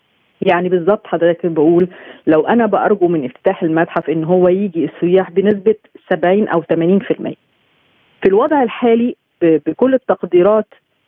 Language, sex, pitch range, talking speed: Arabic, female, 170-210 Hz, 125 wpm